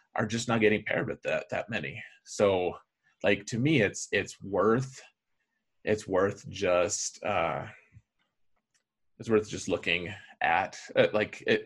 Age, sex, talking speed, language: 30-49, male, 145 wpm, English